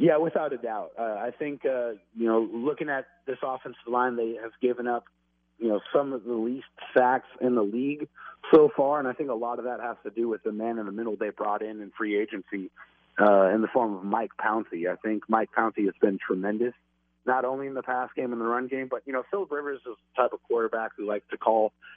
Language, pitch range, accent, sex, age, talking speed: English, 110-135 Hz, American, male, 30-49, 250 wpm